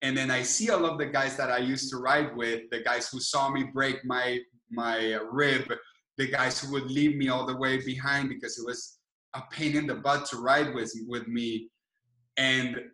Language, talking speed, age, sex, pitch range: English, 220 wpm, 20-39, male, 125-155 Hz